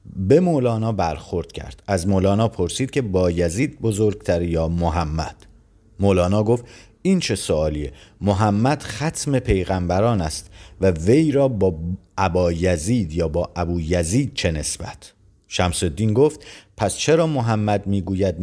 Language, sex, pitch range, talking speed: Persian, male, 85-110 Hz, 135 wpm